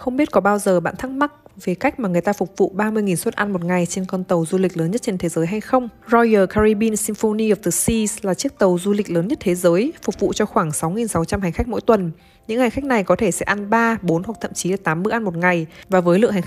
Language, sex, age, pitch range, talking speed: Vietnamese, female, 20-39, 175-215 Hz, 290 wpm